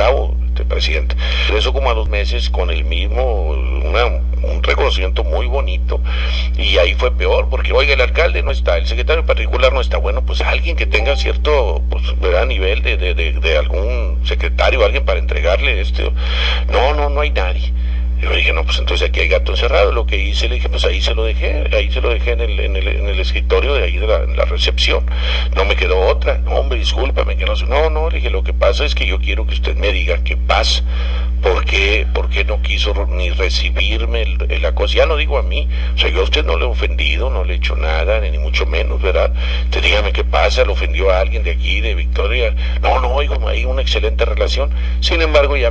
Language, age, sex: English, 50-69, male